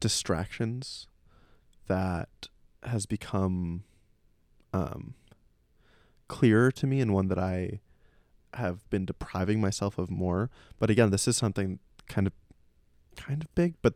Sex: male